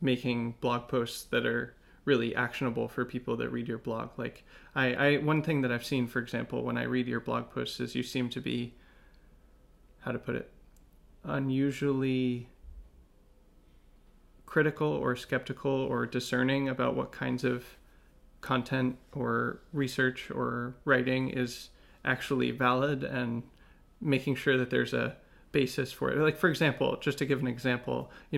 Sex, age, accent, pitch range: male, 30-49, American, 125-140 Hz